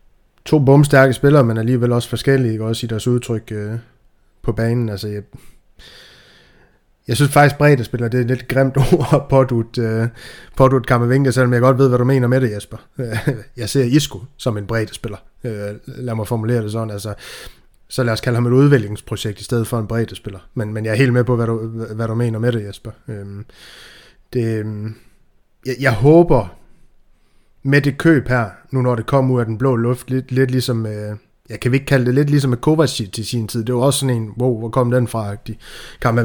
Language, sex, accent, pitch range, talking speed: Danish, male, native, 115-130 Hz, 210 wpm